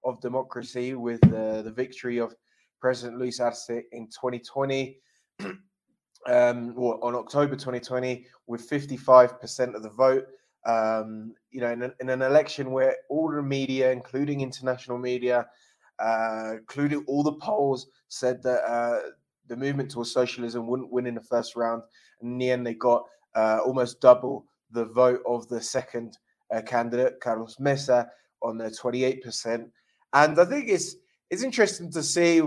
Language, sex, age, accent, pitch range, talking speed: English, male, 20-39, British, 120-140 Hz, 150 wpm